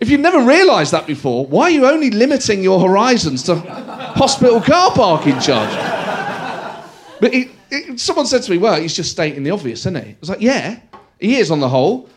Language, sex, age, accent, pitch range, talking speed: English, male, 30-49, British, 170-280 Hz, 205 wpm